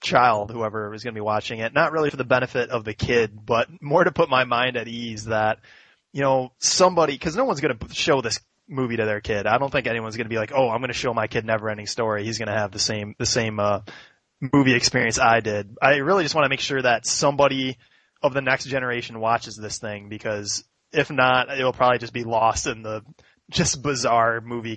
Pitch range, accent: 105-135 Hz, American